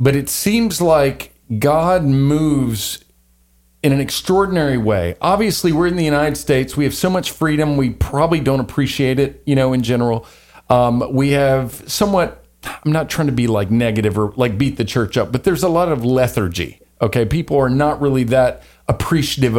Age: 40-59